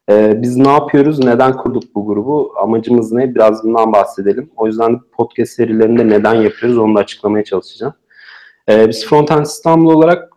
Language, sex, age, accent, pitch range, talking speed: Turkish, male, 40-59, native, 115-135 Hz, 160 wpm